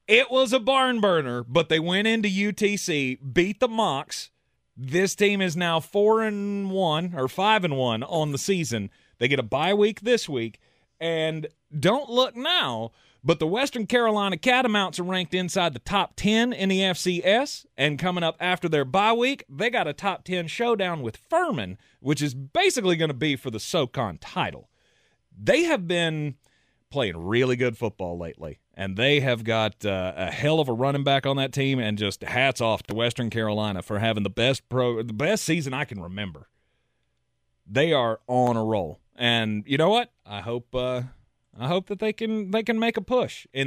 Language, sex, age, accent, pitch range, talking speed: English, male, 30-49, American, 120-200 Hz, 190 wpm